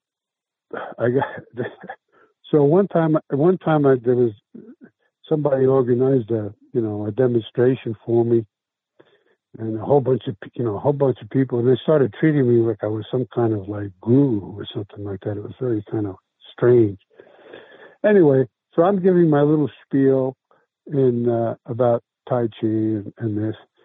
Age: 60-79